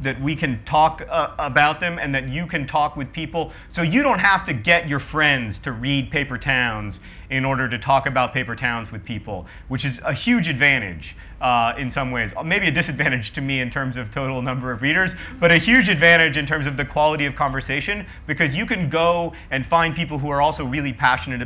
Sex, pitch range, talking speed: male, 125-150 Hz, 220 wpm